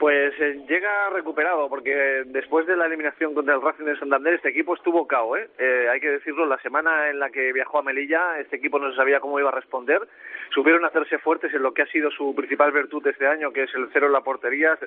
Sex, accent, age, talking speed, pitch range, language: male, Spanish, 40-59, 240 wpm, 140-165 Hz, Spanish